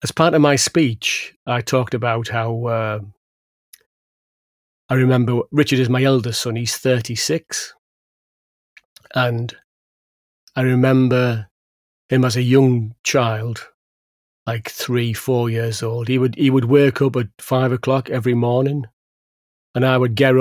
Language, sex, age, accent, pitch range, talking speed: English, male, 40-59, British, 115-130 Hz, 140 wpm